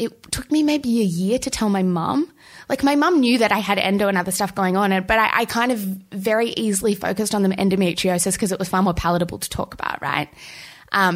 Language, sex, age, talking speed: English, female, 20-39, 240 wpm